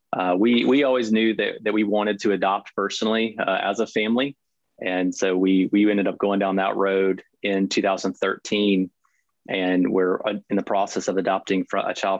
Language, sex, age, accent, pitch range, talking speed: English, male, 30-49, American, 95-100 Hz, 185 wpm